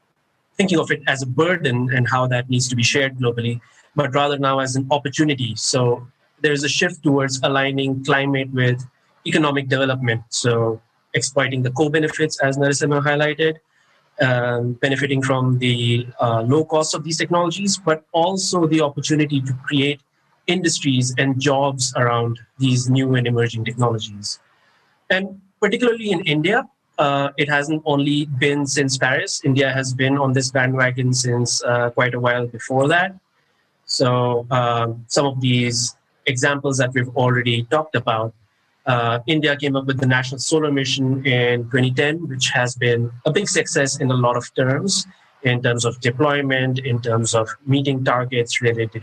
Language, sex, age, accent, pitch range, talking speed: English, male, 30-49, Indian, 125-150 Hz, 160 wpm